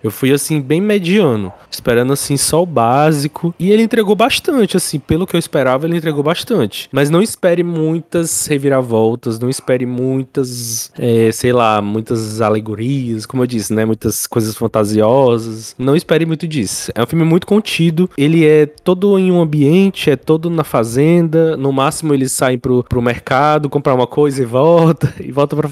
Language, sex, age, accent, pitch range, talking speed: Portuguese, male, 20-39, Brazilian, 125-160 Hz, 175 wpm